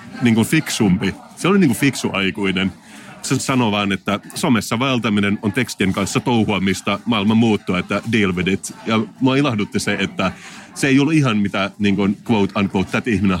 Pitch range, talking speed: 100-130 Hz, 155 wpm